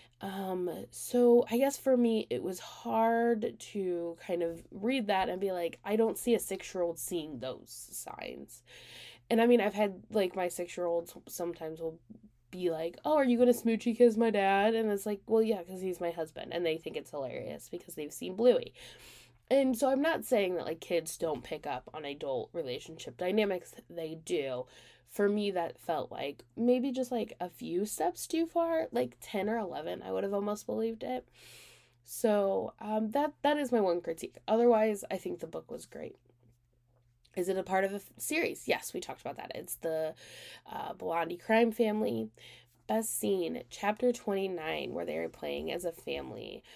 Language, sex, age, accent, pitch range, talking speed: English, female, 10-29, American, 160-225 Hz, 190 wpm